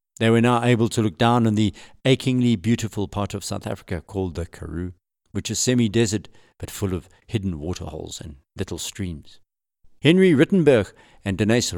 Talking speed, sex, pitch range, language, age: 170 wpm, male, 100-145 Hz, English, 50-69